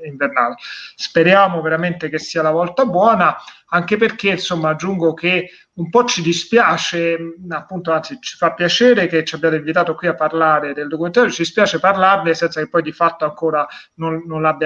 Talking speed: 170 wpm